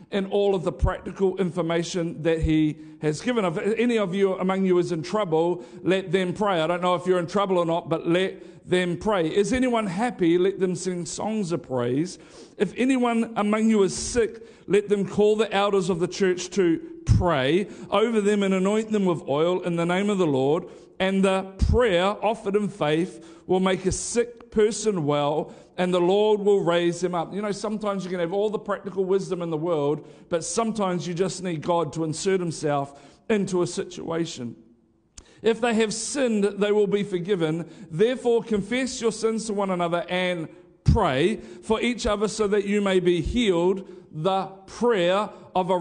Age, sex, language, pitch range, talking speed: 50-69, male, English, 175-210 Hz, 195 wpm